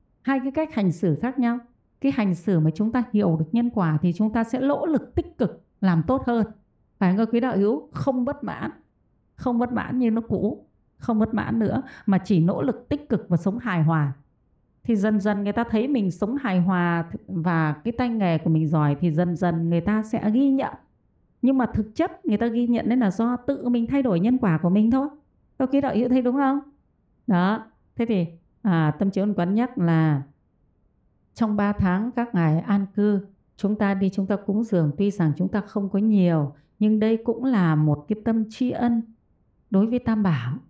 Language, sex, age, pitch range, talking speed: Vietnamese, female, 30-49, 180-240 Hz, 225 wpm